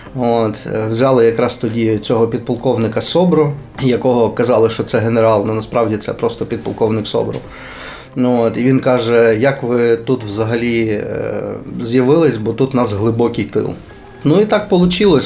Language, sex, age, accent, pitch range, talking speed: Ukrainian, male, 20-39, native, 110-130 Hz, 140 wpm